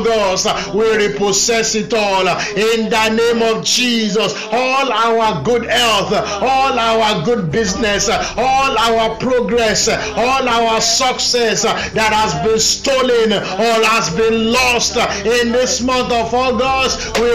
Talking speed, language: 130 wpm, English